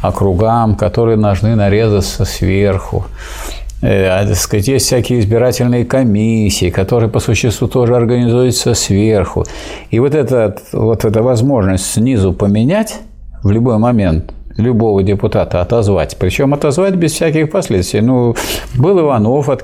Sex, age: male, 50-69